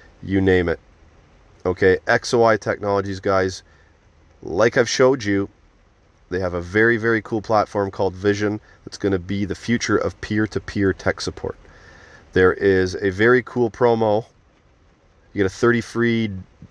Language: English